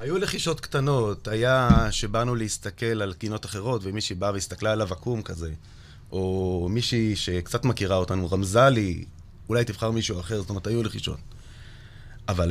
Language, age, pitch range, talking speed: Hebrew, 30-49, 95-130 Hz, 150 wpm